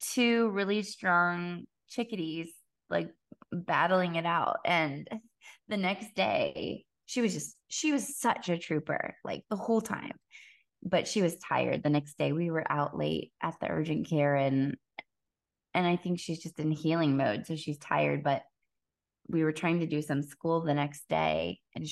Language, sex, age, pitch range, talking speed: English, female, 20-39, 150-215 Hz, 170 wpm